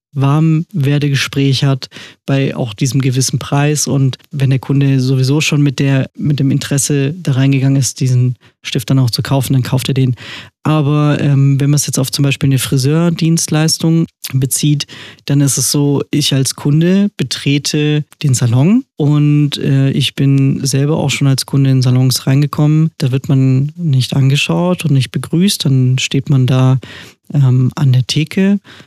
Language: German